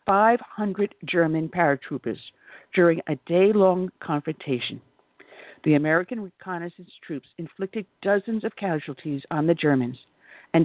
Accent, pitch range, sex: American, 145-185 Hz, female